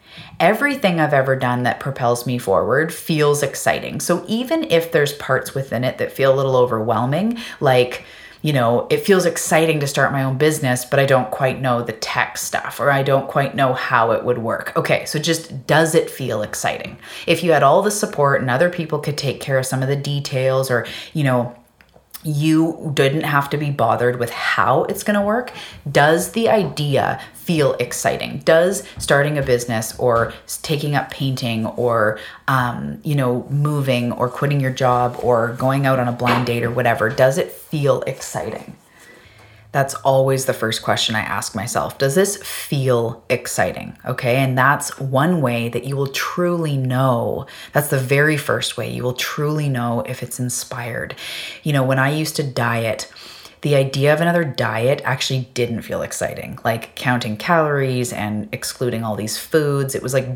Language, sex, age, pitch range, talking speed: English, female, 30-49, 120-150 Hz, 185 wpm